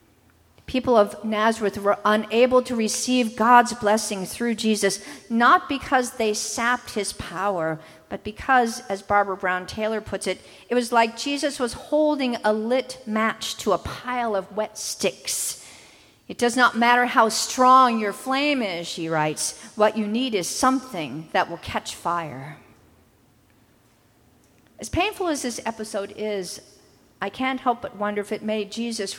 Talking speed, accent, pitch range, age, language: 155 wpm, American, 195-245 Hz, 50-69, English